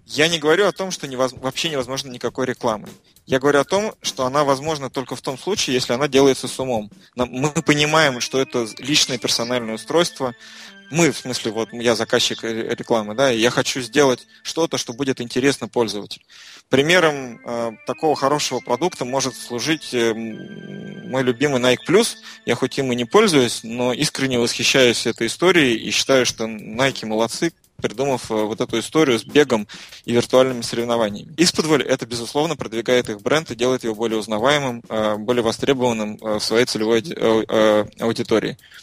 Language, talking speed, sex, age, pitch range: Russian, 155 wpm, male, 20-39, 115-145 Hz